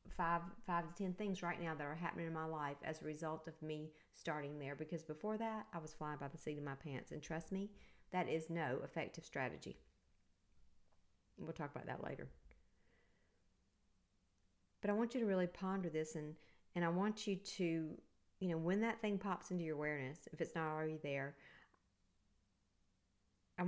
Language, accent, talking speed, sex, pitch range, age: English, American, 190 wpm, female, 135-190 Hz, 50-69